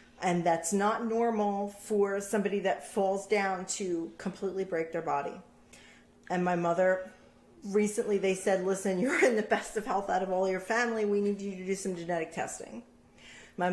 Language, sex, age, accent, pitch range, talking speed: English, female, 40-59, American, 175-215 Hz, 180 wpm